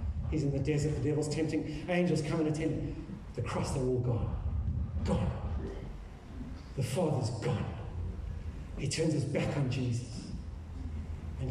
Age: 40-59